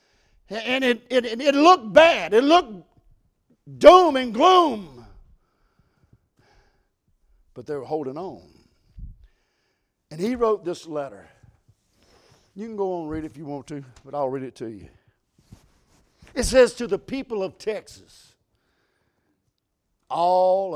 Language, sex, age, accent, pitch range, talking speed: English, male, 60-79, American, 135-200 Hz, 135 wpm